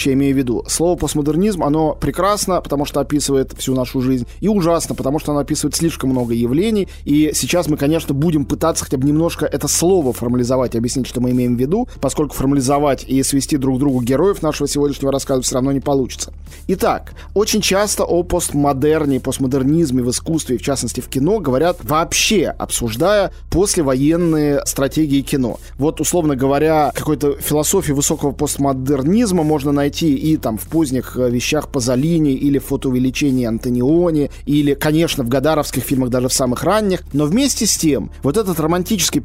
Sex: male